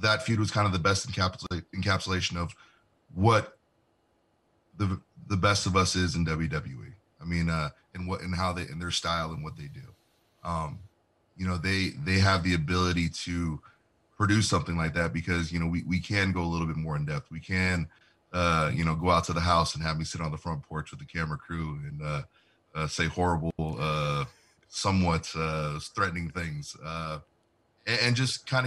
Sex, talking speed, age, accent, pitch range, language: male, 200 wpm, 30-49, American, 80-95 Hz, English